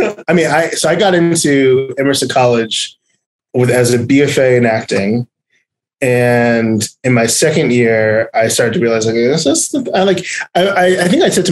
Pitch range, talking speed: 115-145 Hz, 190 wpm